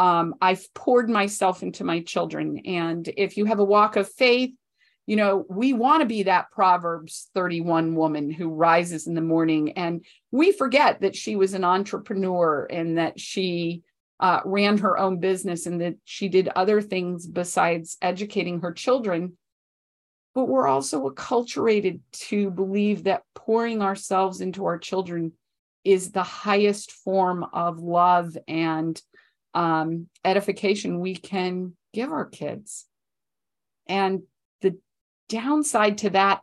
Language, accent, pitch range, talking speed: English, American, 170-210 Hz, 140 wpm